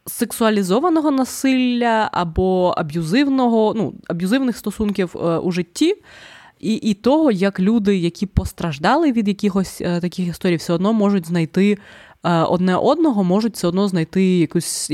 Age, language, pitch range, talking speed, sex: 20-39, Ukrainian, 150-200 Hz, 120 wpm, female